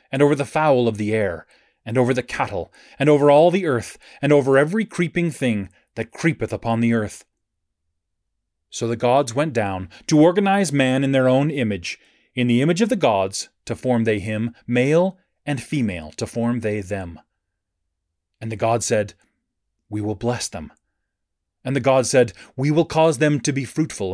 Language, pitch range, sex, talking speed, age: English, 105-145 Hz, male, 185 wpm, 30-49